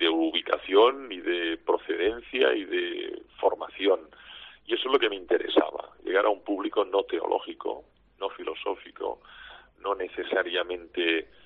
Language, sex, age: Spanish, male, 40-59